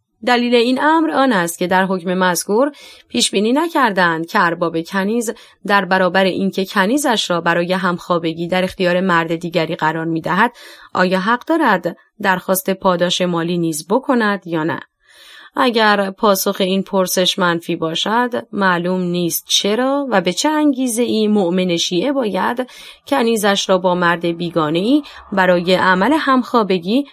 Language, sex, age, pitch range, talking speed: Persian, female, 30-49, 175-230 Hz, 135 wpm